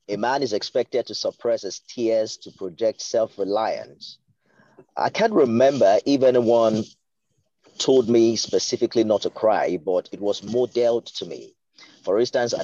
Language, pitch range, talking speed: English, 105-130 Hz, 145 wpm